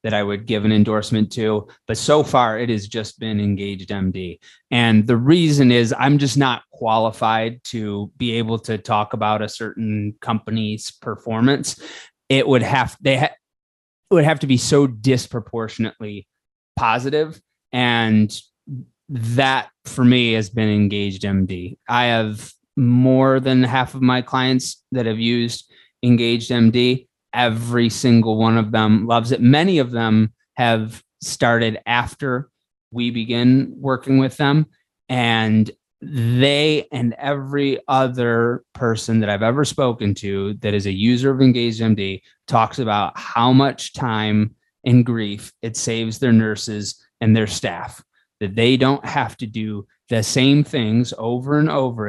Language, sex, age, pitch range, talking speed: English, male, 20-39, 110-130 Hz, 150 wpm